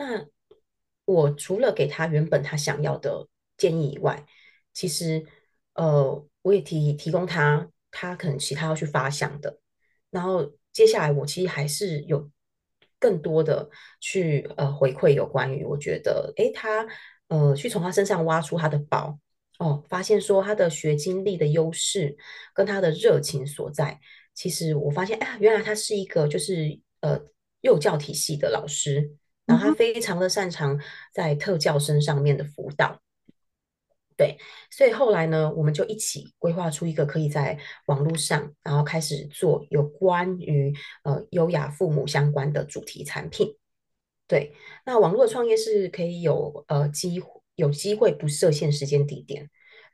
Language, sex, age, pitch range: Chinese, female, 30-49, 145-185 Hz